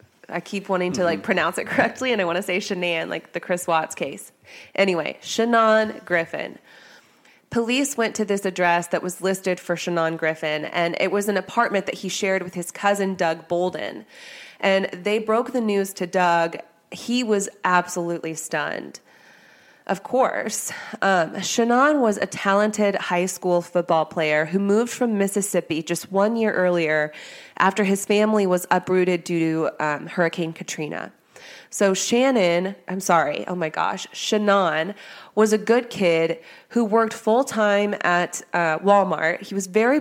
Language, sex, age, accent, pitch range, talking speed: English, female, 30-49, American, 170-215 Hz, 160 wpm